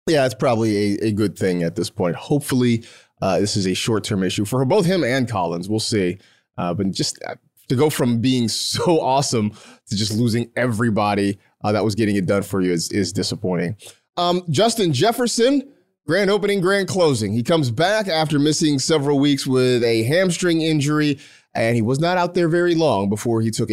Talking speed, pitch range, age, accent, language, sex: 195 wpm, 110-155 Hz, 30-49, American, English, male